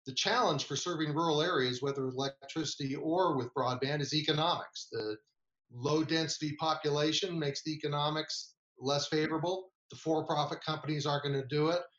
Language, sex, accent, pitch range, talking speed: English, male, American, 140-175 Hz, 145 wpm